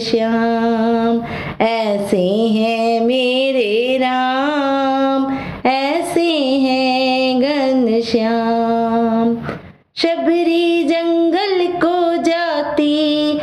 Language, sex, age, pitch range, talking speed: English, female, 20-39, 235-295 Hz, 60 wpm